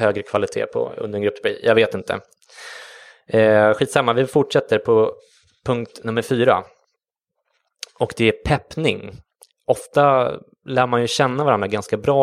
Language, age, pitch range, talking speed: English, 20-39, 105-135 Hz, 135 wpm